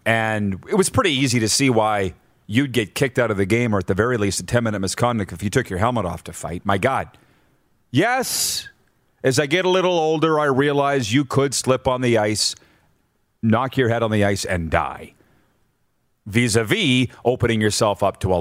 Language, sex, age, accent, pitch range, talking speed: English, male, 40-59, American, 105-145 Hz, 200 wpm